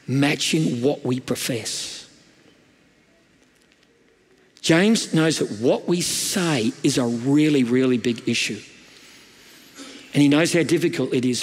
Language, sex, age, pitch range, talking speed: English, male, 50-69, 130-180 Hz, 120 wpm